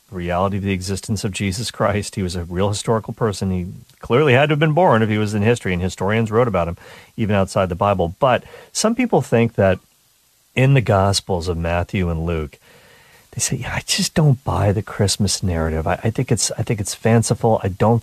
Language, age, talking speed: English, 40-59, 225 wpm